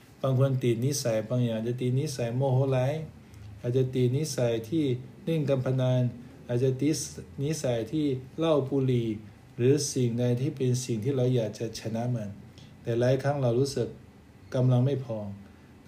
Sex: male